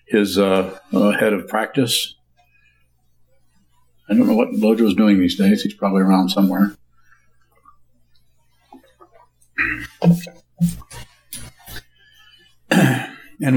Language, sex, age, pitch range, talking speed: English, male, 60-79, 100-120 Hz, 85 wpm